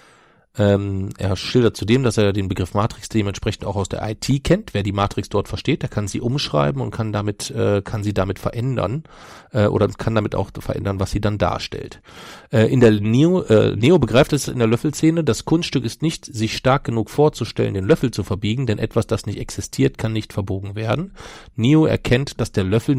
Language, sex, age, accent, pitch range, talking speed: German, male, 40-59, German, 105-135 Hz, 205 wpm